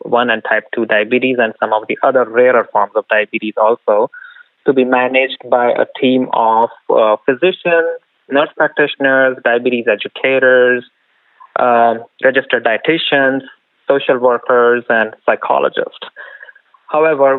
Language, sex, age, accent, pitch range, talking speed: English, male, 20-39, Indian, 120-150 Hz, 125 wpm